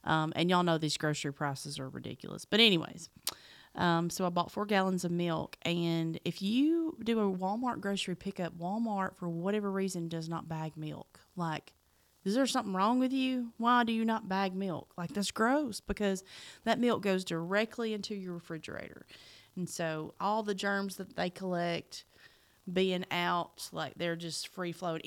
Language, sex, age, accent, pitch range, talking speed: English, female, 30-49, American, 170-220 Hz, 175 wpm